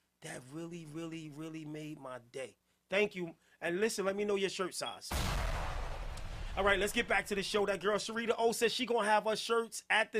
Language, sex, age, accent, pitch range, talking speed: English, male, 30-49, American, 180-270 Hz, 220 wpm